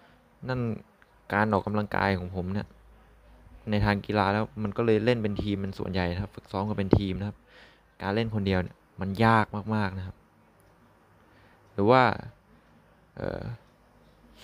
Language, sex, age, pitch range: Thai, male, 20-39, 95-115 Hz